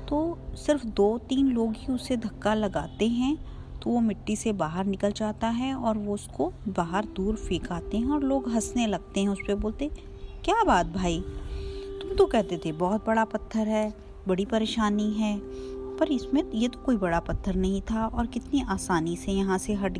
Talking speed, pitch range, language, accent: 190 wpm, 195-240 Hz, Hindi, native